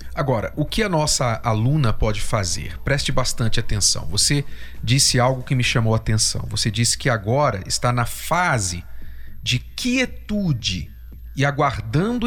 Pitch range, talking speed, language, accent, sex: 115-165 Hz, 145 wpm, Portuguese, Brazilian, male